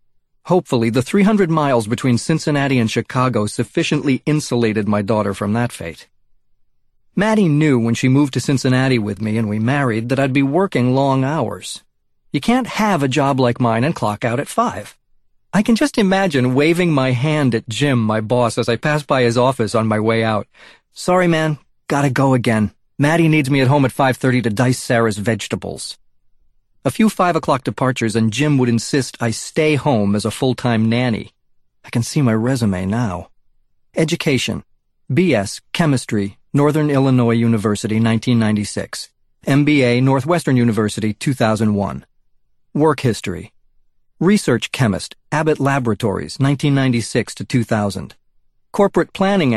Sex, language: male, English